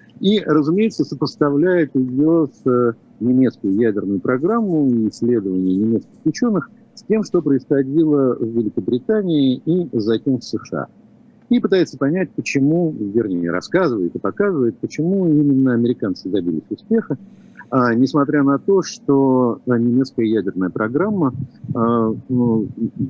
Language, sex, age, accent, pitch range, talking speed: Russian, male, 50-69, native, 110-150 Hz, 120 wpm